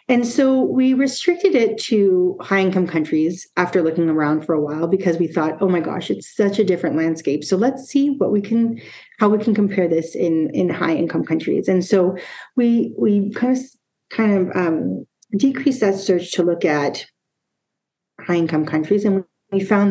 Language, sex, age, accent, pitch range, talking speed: English, female, 40-59, American, 175-230 Hz, 190 wpm